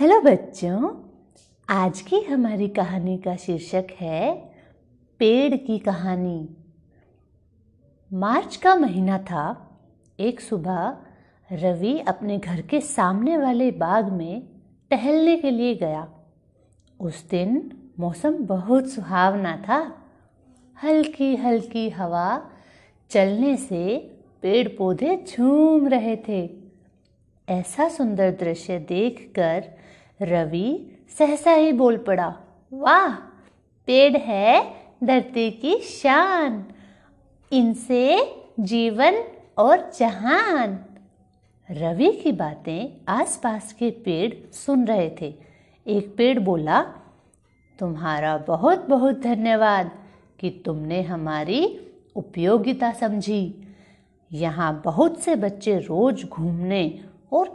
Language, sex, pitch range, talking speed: Hindi, female, 175-265 Hz, 95 wpm